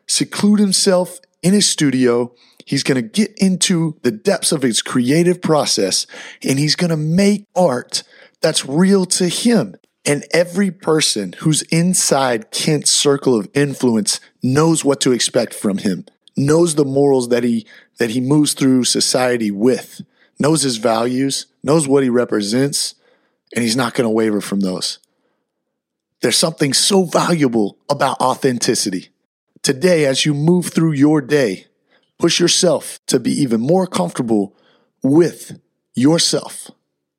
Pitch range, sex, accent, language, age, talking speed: 130-170 Hz, male, American, English, 30-49, 140 wpm